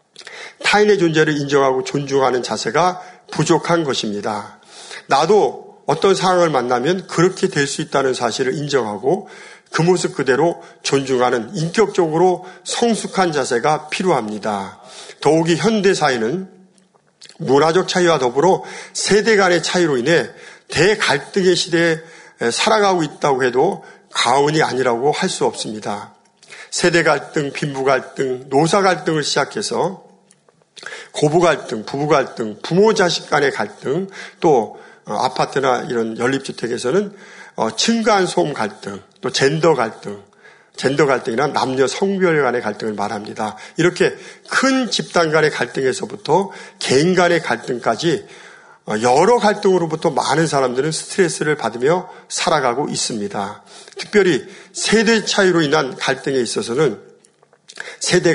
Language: Korean